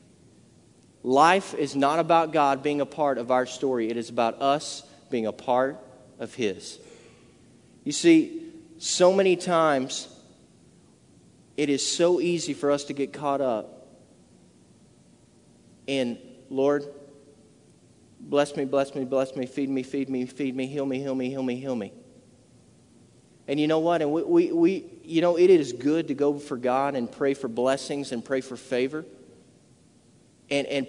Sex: male